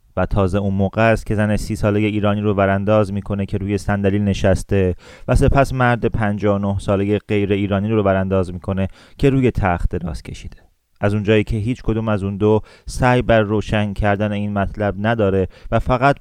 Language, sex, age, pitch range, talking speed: Persian, male, 30-49, 100-115 Hz, 185 wpm